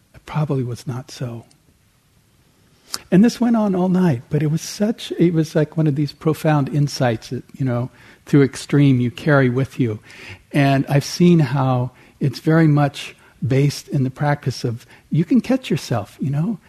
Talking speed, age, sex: 175 wpm, 60-79, male